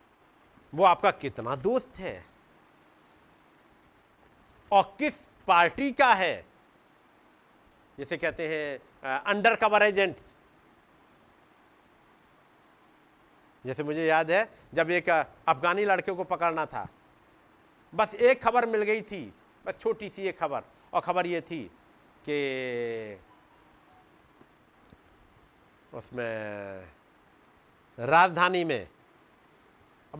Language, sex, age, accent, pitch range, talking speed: Hindi, male, 50-69, native, 135-190 Hz, 95 wpm